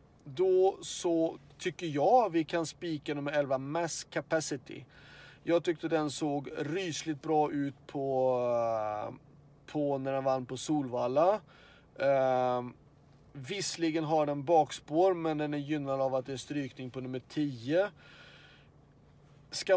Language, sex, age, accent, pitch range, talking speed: Swedish, male, 30-49, native, 135-155 Hz, 130 wpm